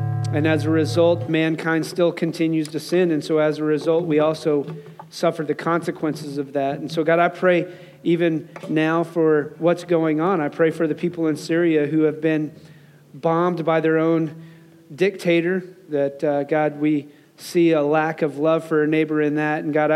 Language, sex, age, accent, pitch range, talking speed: English, male, 40-59, American, 155-190 Hz, 190 wpm